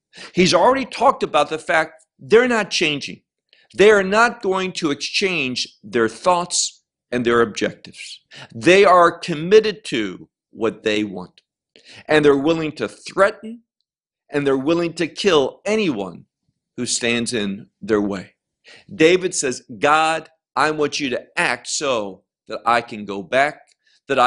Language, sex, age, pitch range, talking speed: English, male, 50-69, 125-185 Hz, 145 wpm